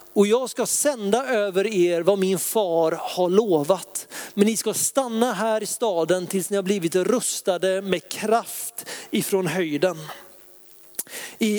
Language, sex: Swedish, male